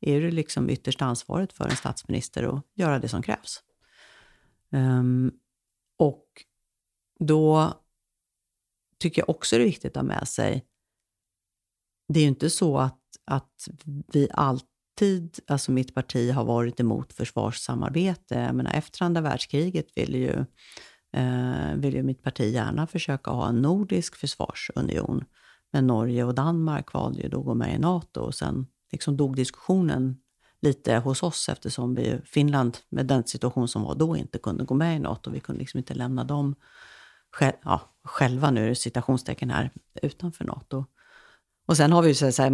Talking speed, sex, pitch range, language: 160 wpm, female, 120-150 Hz, English